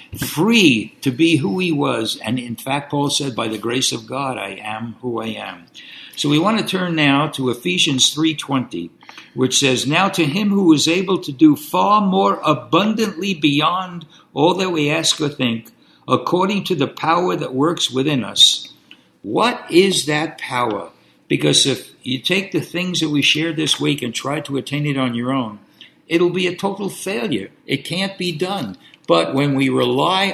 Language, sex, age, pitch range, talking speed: English, male, 60-79, 130-165 Hz, 190 wpm